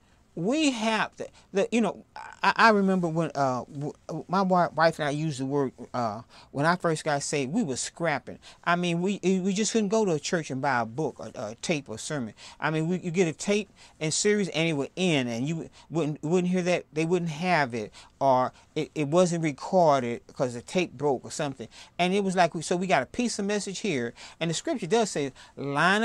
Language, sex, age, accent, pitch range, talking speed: English, male, 40-59, American, 150-210 Hz, 230 wpm